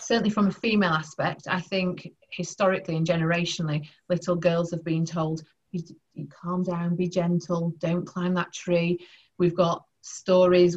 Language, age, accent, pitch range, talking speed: English, 30-49, British, 165-190 Hz, 155 wpm